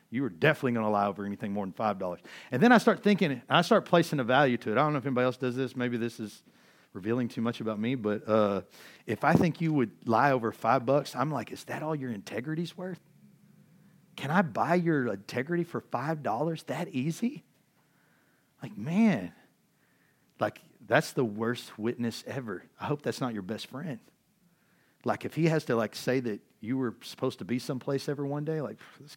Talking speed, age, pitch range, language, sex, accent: 210 wpm, 40-59, 110-155 Hz, English, male, American